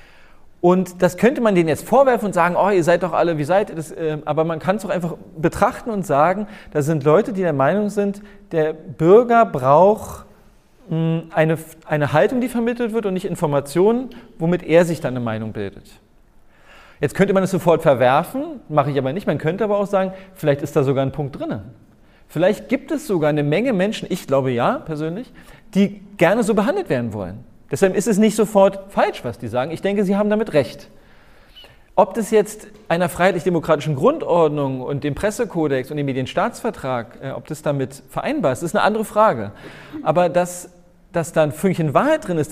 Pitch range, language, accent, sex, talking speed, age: 150-205 Hz, German, German, male, 195 wpm, 40-59